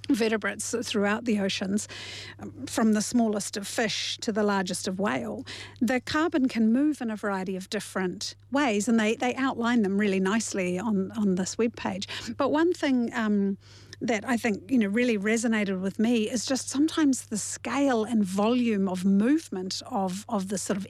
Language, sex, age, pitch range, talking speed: English, female, 50-69, 195-240 Hz, 180 wpm